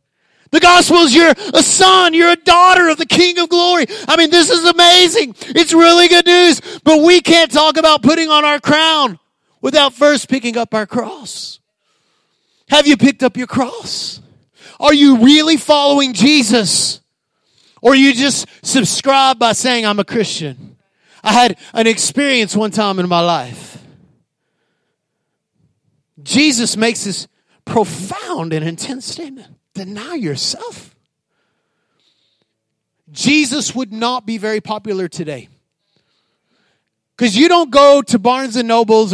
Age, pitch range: 30-49, 195-295 Hz